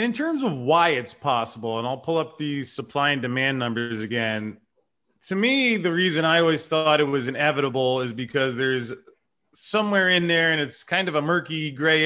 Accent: American